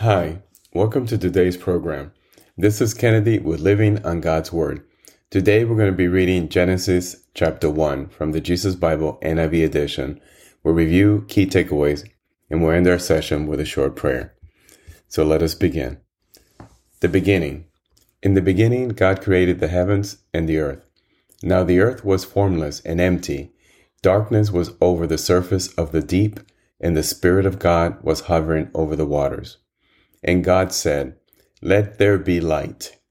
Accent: American